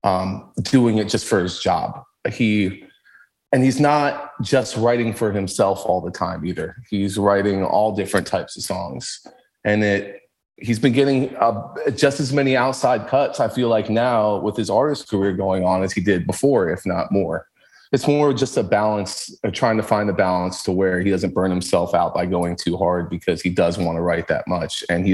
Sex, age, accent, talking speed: male, 30-49, American, 205 wpm